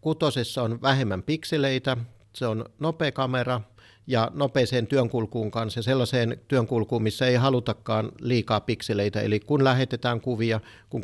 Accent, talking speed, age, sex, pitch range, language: native, 130 wpm, 60-79, male, 110-125 Hz, Finnish